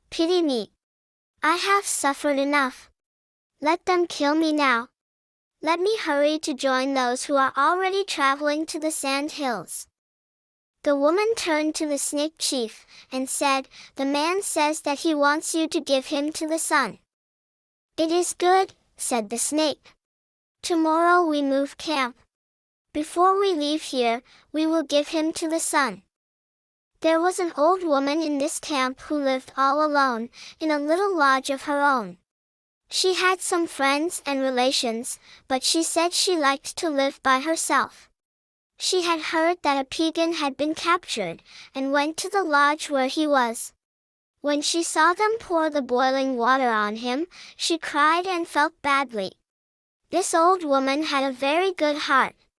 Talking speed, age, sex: 160 wpm, 10-29, male